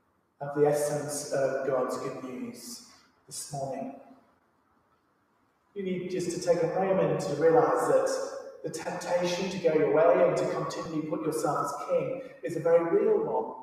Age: 30-49